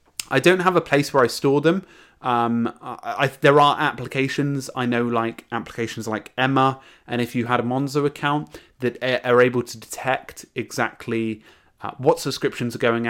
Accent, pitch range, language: British, 115-140 Hz, English